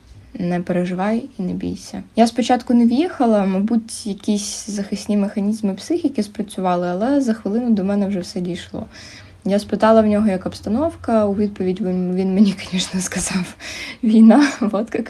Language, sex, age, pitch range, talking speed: Ukrainian, female, 20-39, 180-215 Hz, 150 wpm